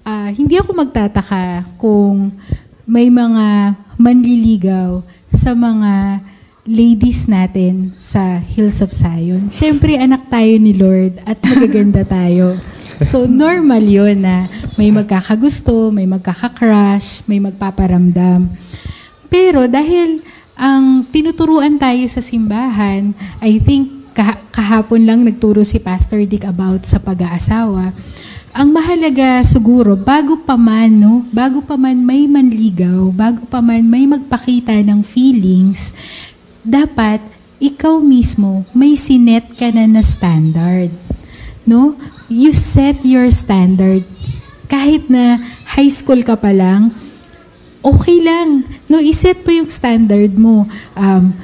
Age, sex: 20-39, female